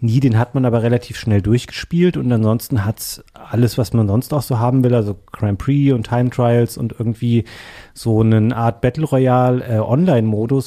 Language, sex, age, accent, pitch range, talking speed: German, male, 30-49, German, 115-135 Hz, 185 wpm